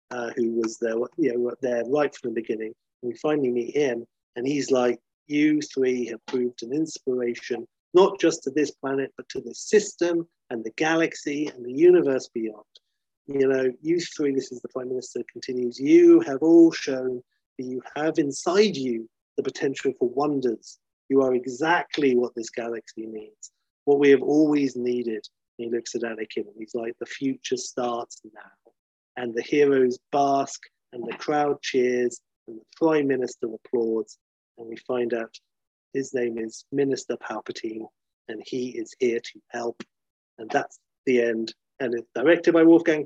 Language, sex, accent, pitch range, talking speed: English, male, British, 120-160 Hz, 165 wpm